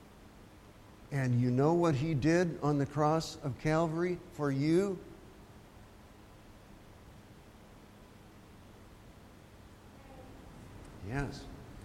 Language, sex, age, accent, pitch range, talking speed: English, male, 60-79, American, 105-160 Hz, 70 wpm